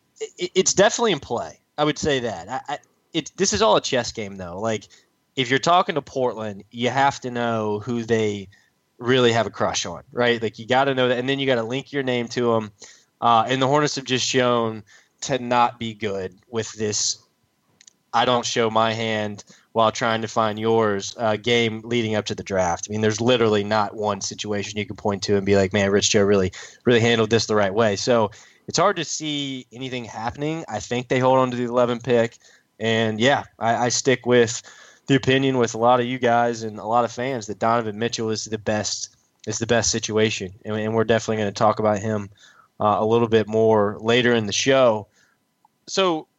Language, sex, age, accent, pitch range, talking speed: English, male, 20-39, American, 110-130 Hz, 220 wpm